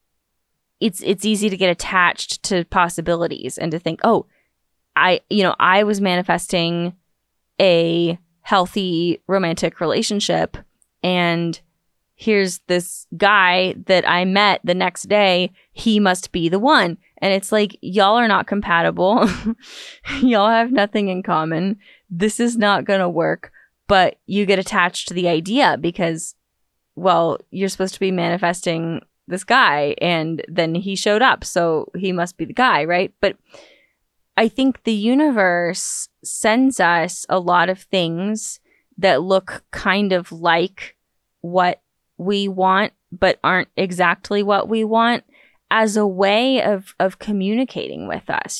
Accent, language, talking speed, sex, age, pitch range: American, English, 140 wpm, female, 20-39, 175-210 Hz